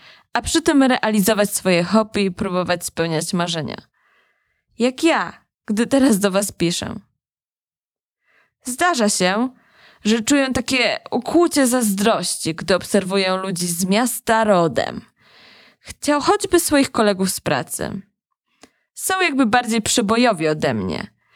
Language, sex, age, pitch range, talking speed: Polish, female, 20-39, 195-255 Hz, 120 wpm